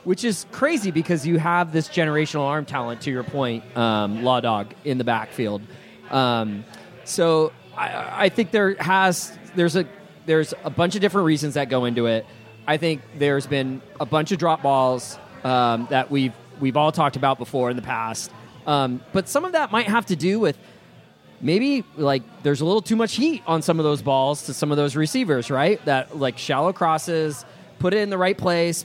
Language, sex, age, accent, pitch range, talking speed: English, male, 30-49, American, 130-175 Hz, 200 wpm